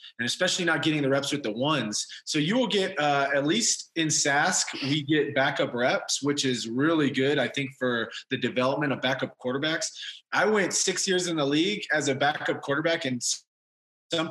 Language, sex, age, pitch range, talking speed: English, male, 20-39, 135-165 Hz, 195 wpm